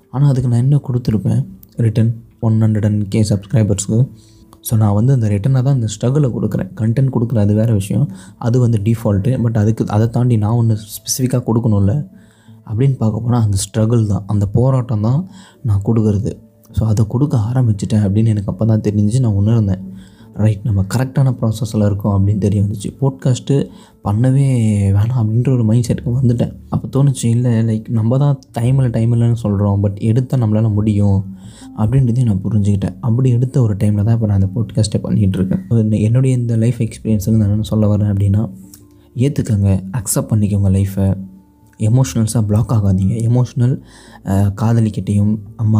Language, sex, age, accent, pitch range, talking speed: Tamil, male, 20-39, native, 105-120 Hz, 155 wpm